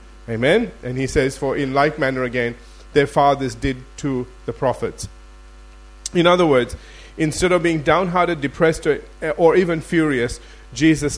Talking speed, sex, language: 145 wpm, male, English